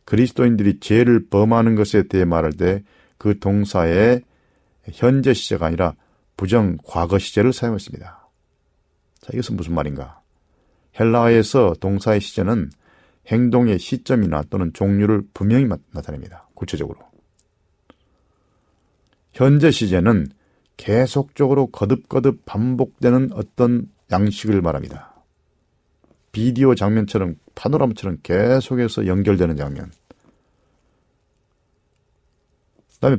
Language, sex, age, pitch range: Korean, male, 40-59, 90-120 Hz